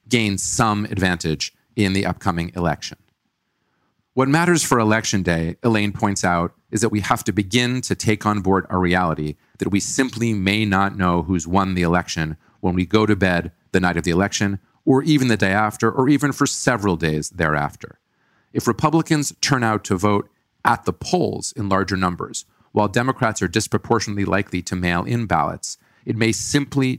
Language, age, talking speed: English, 40-59, 180 wpm